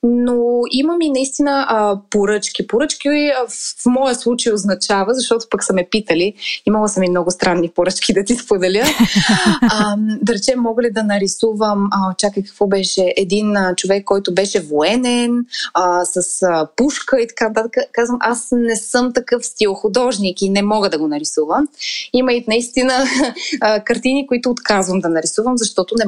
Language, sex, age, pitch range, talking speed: Bulgarian, female, 20-39, 195-245 Hz, 165 wpm